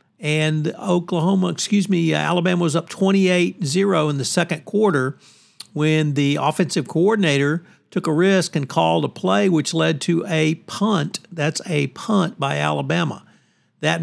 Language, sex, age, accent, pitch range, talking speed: English, male, 50-69, American, 140-180 Hz, 145 wpm